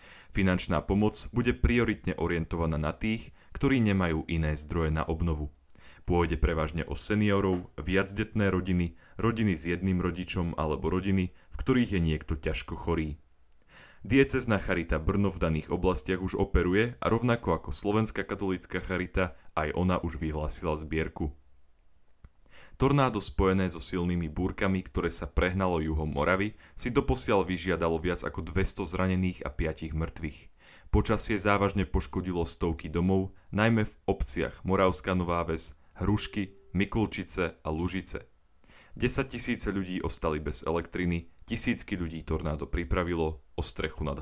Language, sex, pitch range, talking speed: Slovak, male, 80-100 Hz, 135 wpm